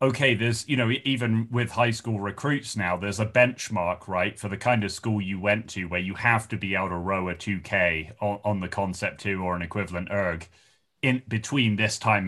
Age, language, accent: 30-49, English, British